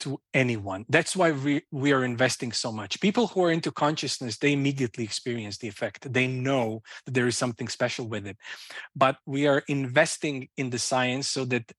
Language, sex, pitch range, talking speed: English, male, 120-150 Hz, 195 wpm